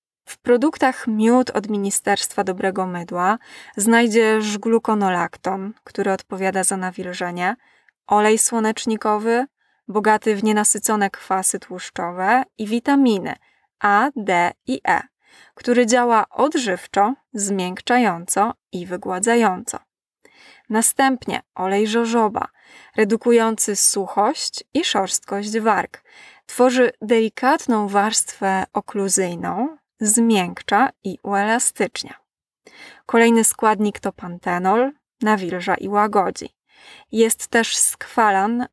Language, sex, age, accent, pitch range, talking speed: Polish, female, 20-39, native, 195-245 Hz, 90 wpm